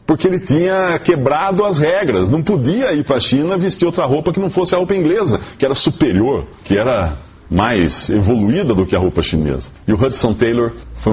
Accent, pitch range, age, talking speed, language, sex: Brazilian, 95-130 Hz, 40-59, 205 wpm, English, male